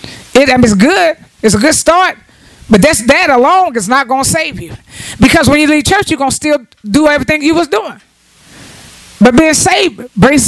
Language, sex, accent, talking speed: English, female, American, 210 wpm